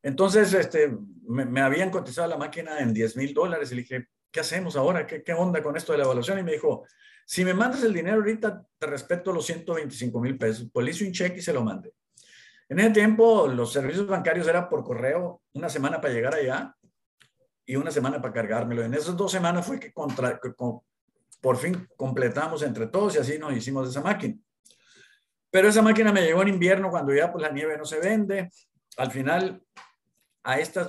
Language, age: Spanish, 50-69